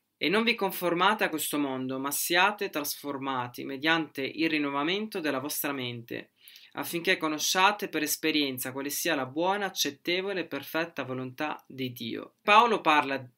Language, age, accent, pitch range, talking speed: Italian, 20-39, native, 140-190 Hz, 145 wpm